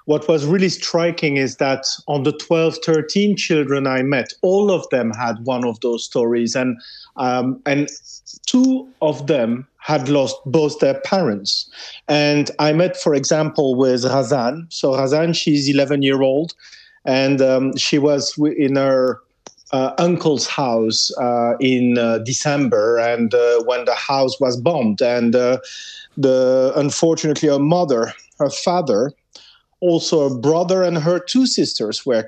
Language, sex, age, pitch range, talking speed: English, male, 40-59, 130-165 Hz, 145 wpm